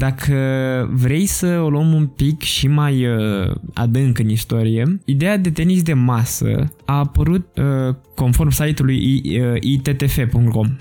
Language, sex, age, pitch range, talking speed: Romanian, male, 20-39, 120-165 Hz, 120 wpm